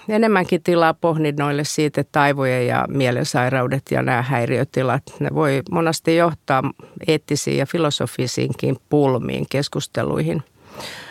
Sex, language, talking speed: female, Finnish, 105 wpm